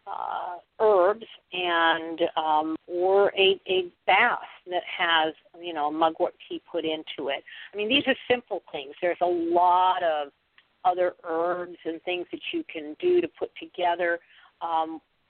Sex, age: female, 50-69